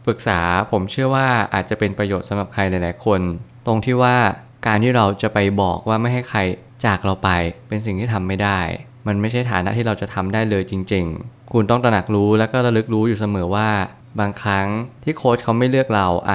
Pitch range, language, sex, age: 95-120 Hz, Thai, male, 20-39